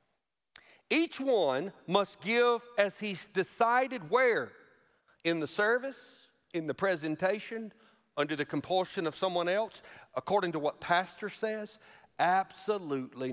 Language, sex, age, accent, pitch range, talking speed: English, male, 50-69, American, 140-230 Hz, 115 wpm